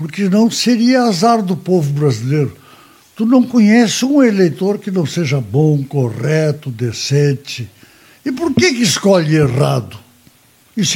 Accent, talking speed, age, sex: Brazilian, 135 wpm, 60-79, male